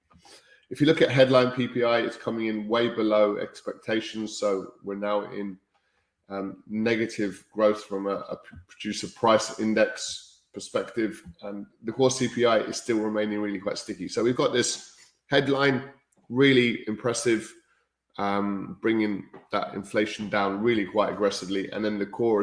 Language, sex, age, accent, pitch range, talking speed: English, male, 20-39, British, 100-120 Hz, 145 wpm